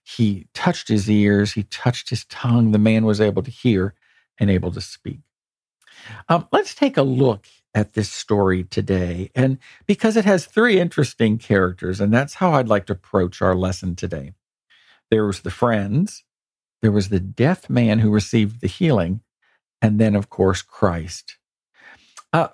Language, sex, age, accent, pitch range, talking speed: English, male, 50-69, American, 100-130 Hz, 170 wpm